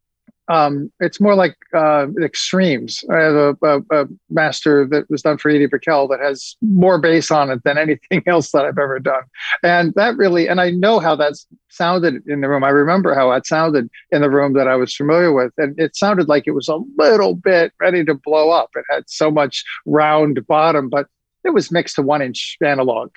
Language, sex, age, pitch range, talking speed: English, male, 50-69, 135-170 Hz, 210 wpm